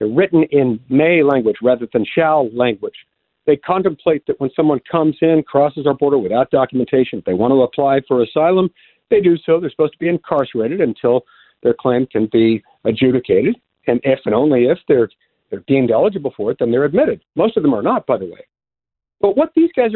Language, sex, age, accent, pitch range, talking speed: English, male, 50-69, American, 130-200 Hz, 200 wpm